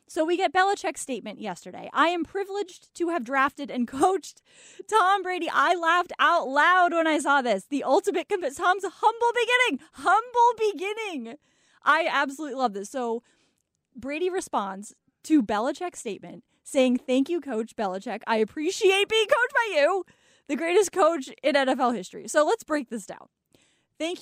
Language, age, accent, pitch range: English, 20-39, American, 245-350 Hz